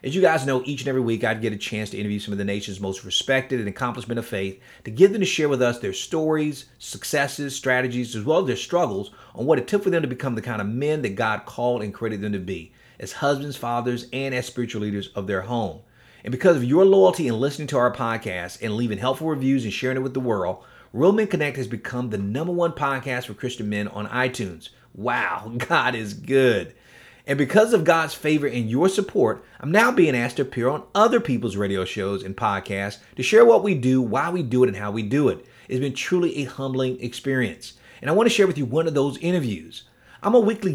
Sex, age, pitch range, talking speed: male, 30-49, 115-150 Hz, 240 wpm